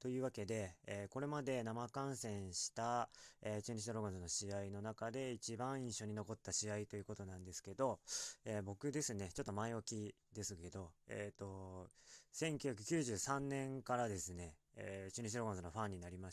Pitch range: 100-125 Hz